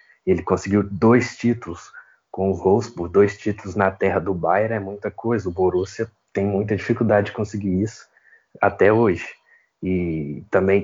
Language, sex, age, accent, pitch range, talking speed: Portuguese, male, 20-39, Brazilian, 90-105 Hz, 155 wpm